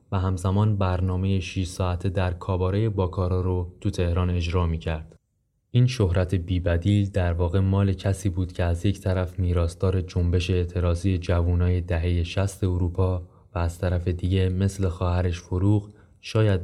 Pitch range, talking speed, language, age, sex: 85-95 Hz, 145 wpm, Persian, 20-39, male